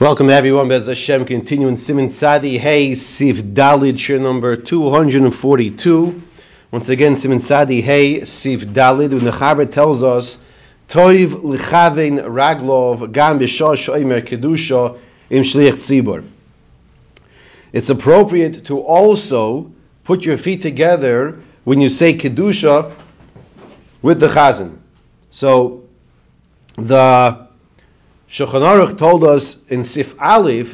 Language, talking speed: English, 115 wpm